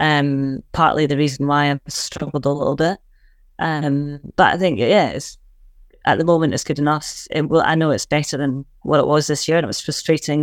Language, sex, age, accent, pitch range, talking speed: English, female, 20-39, British, 140-160 Hz, 220 wpm